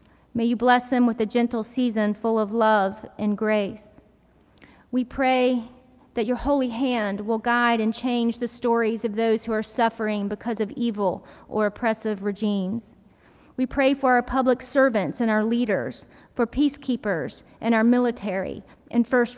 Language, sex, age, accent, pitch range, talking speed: English, female, 40-59, American, 215-240 Hz, 160 wpm